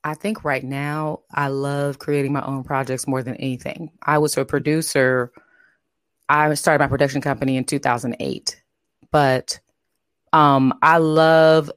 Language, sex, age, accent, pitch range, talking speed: English, female, 20-39, American, 135-155 Hz, 140 wpm